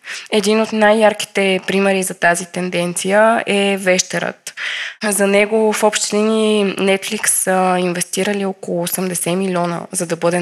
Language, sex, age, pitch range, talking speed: Bulgarian, female, 20-39, 175-210 Hz, 125 wpm